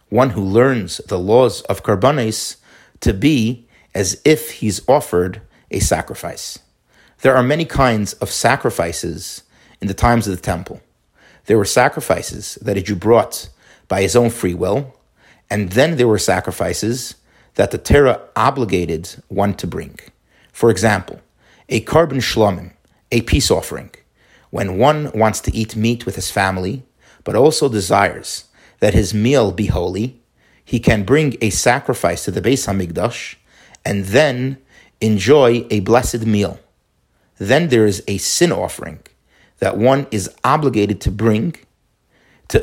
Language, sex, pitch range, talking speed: English, male, 100-125 Hz, 145 wpm